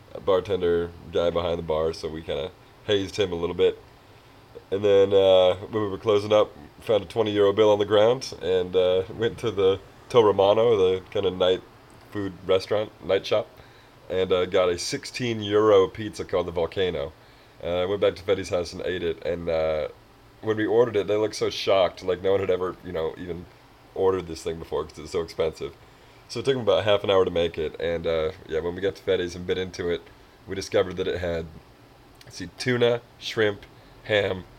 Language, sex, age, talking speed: English, male, 30-49, 215 wpm